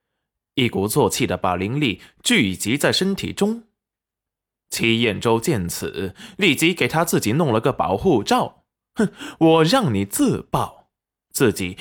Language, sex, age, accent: Chinese, male, 20-39, native